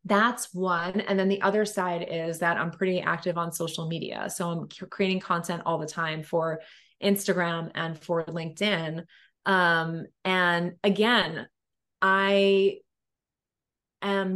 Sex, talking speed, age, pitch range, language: female, 135 wpm, 20-39, 170-210 Hz, English